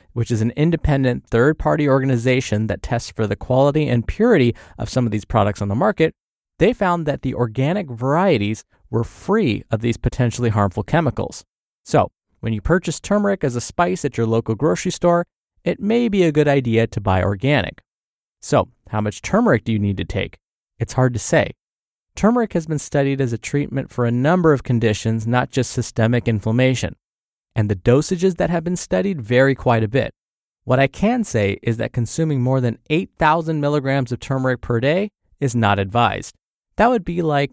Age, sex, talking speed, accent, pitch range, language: 20-39, male, 190 wpm, American, 115-165 Hz, English